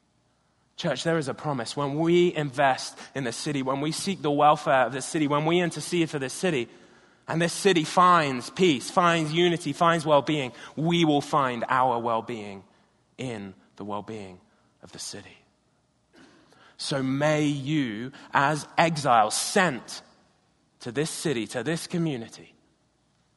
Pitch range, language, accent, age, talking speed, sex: 120-155 Hz, English, British, 20-39, 155 wpm, male